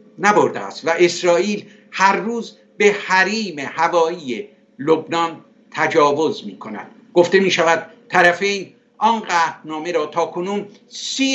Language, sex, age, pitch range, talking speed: Persian, male, 60-79, 155-200 Hz, 125 wpm